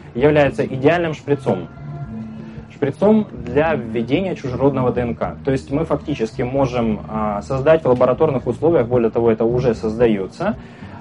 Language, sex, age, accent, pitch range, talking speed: Russian, male, 20-39, native, 115-145 Hz, 120 wpm